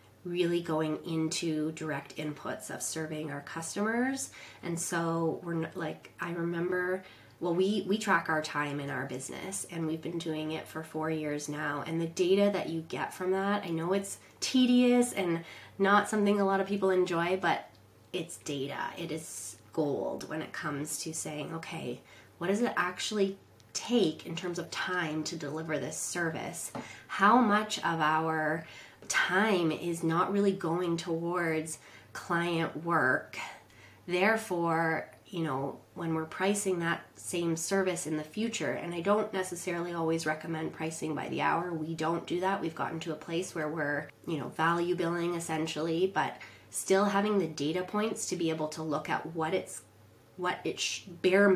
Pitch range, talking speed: 155-185 Hz, 170 wpm